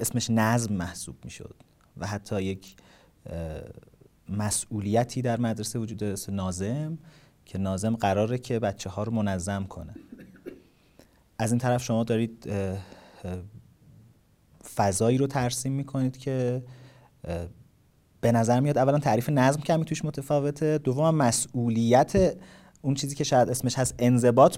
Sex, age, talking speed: male, 40-59, 125 wpm